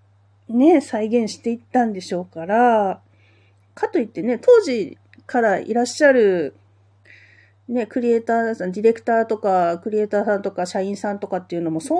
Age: 40-59